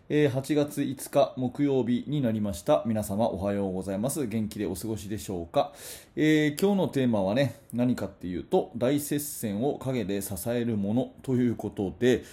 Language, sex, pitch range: Japanese, male, 100-130 Hz